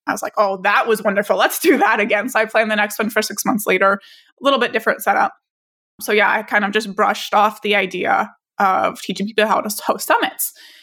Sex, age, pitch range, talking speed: female, 20-39, 210-260 Hz, 240 wpm